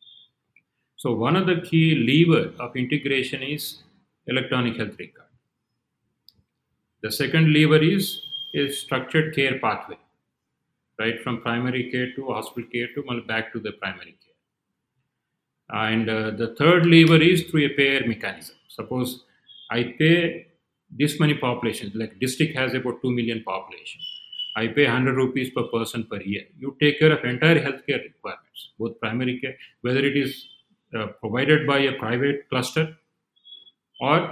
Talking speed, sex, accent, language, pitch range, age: 145 wpm, male, native, Telugu, 120-155 Hz, 40-59